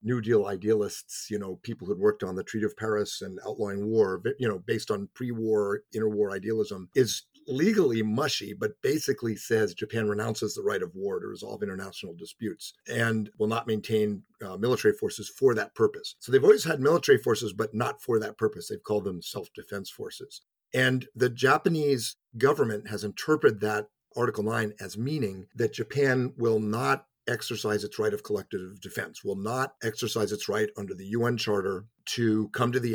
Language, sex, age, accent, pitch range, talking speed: English, male, 50-69, American, 105-145 Hz, 180 wpm